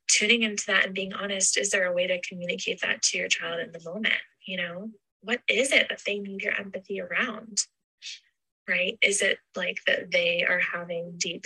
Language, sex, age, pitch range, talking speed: English, female, 20-39, 180-260 Hz, 205 wpm